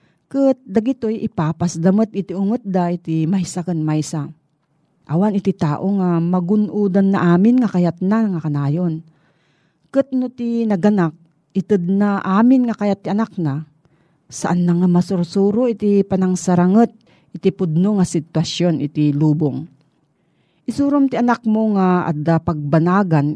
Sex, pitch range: female, 160-210 Hz